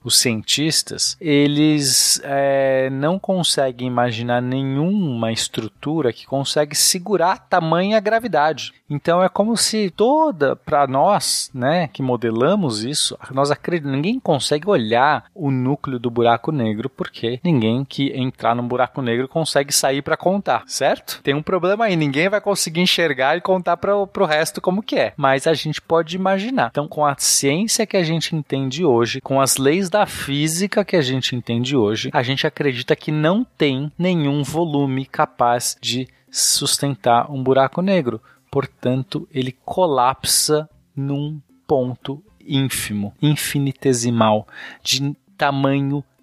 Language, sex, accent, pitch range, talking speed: Portuguese, male, Brazilian, 125-165 Hz, 145 wpm